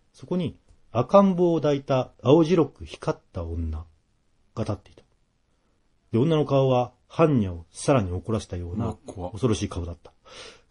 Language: Japanese